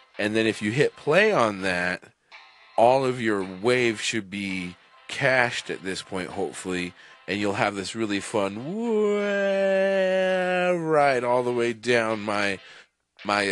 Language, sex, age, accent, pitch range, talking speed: English, male, 30-49, American, 100-130 Hz, 145 wpm